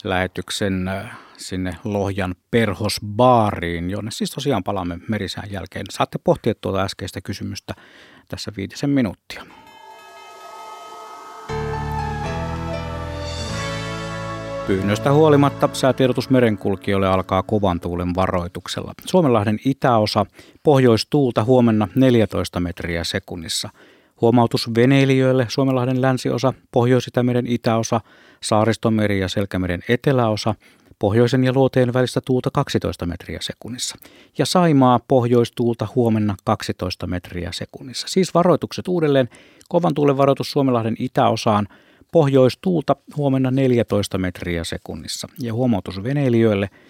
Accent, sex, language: native, male, Finnish